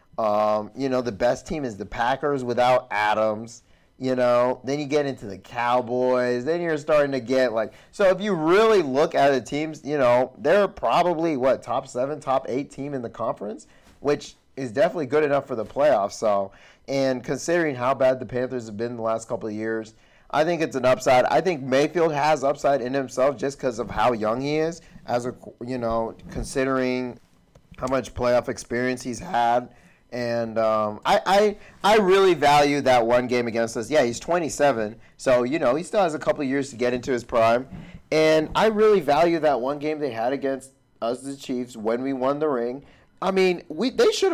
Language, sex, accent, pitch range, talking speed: English, male, American, 120-150 Hz, 205 wpm